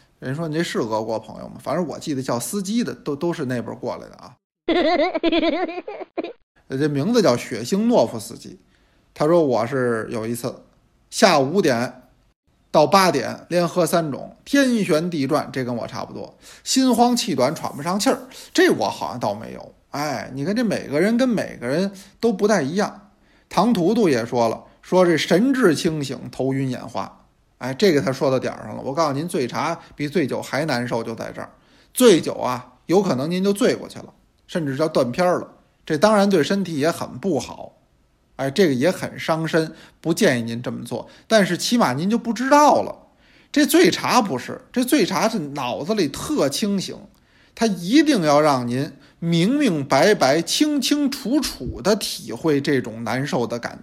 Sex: male